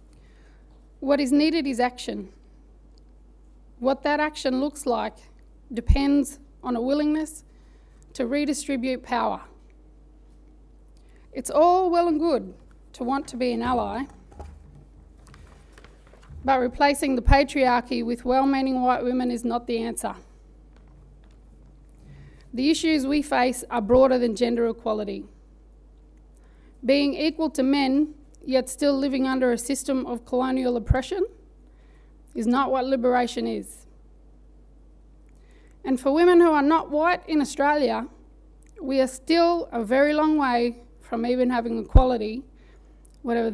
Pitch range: 235-285 Hz